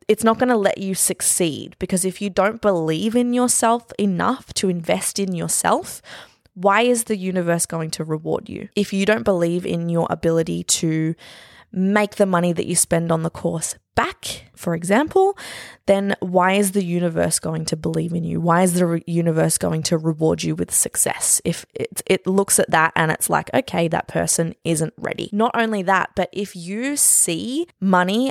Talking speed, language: 190 wpm, English